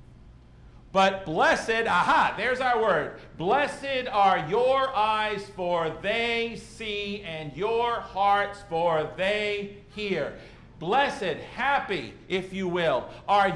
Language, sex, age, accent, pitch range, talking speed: English, male, 50-69, American, 155-235 Hz, 110 wpm